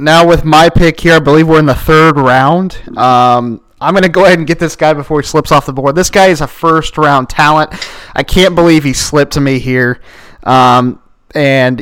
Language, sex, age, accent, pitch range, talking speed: English, male, 20-39, American, 135-165 Hz, 225 wpm